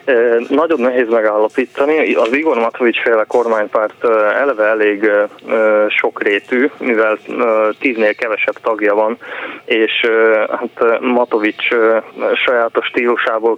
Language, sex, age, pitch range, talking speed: Hungarian, male, 20-39, 110-125 Hz, 90 wpm